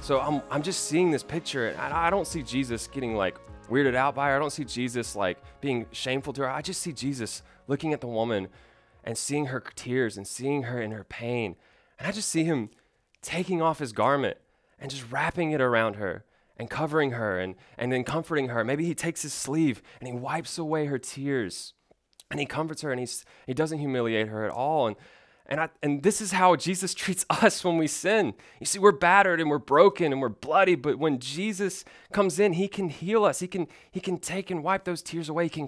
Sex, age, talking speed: male, 20-39, 230 wpm